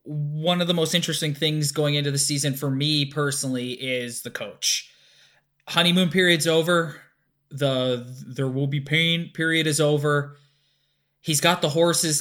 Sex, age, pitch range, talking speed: male, 20-39, 140-165 Hz, 150 wpm